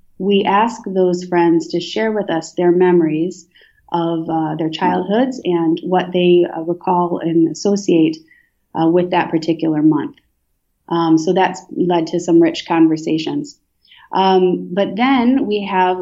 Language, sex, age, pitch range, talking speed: English, female, 30-49, 165-190 Hz, 145 wpm